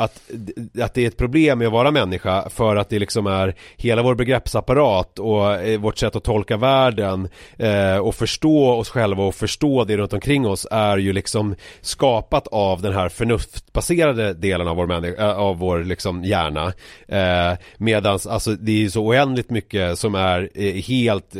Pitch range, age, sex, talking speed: 95-115 Hz, 30-49, male, 170 wpm